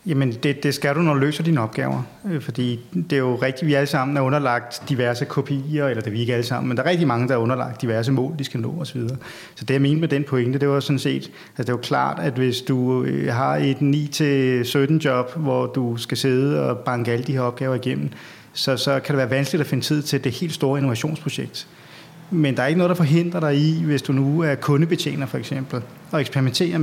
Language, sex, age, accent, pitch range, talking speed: Danish, male, 30-49, native, 130-160 Hz, 245 wpm